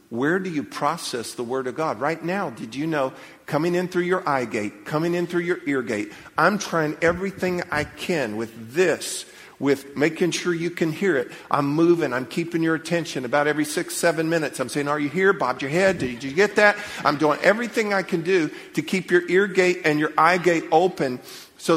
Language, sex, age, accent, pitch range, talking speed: English, male, 50-69, American, 145-180 Hz, 220 wpm